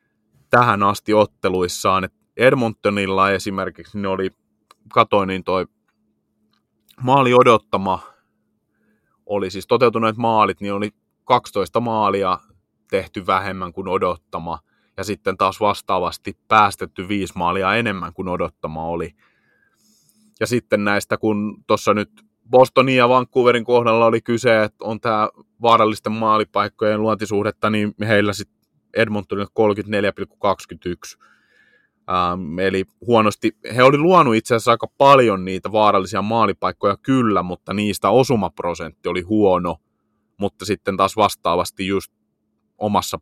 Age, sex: 30-49, male